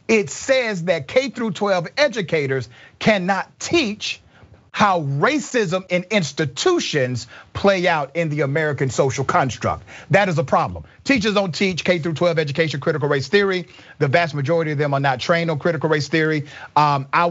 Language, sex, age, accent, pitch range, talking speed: English, male, 40-59, American, 145-185 Hz, 165 wpm